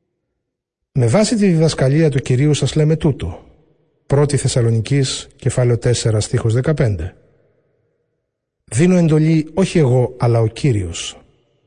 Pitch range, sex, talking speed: 120-150 Hz, male, 120 wpm